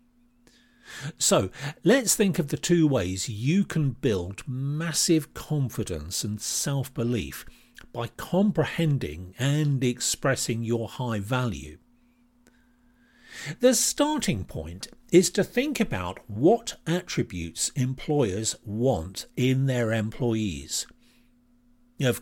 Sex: male